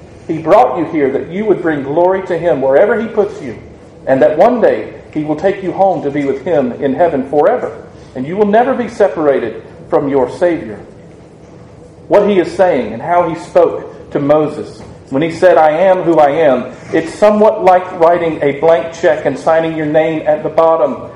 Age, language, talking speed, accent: 40-59, English, 205 wpm, American